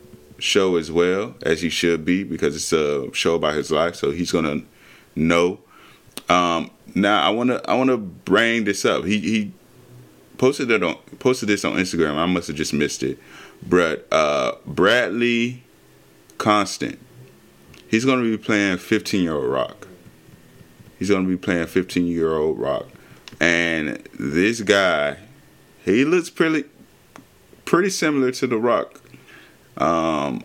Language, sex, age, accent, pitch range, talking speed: English, male, 20-39, American, 85-115 Hz, 155 wpm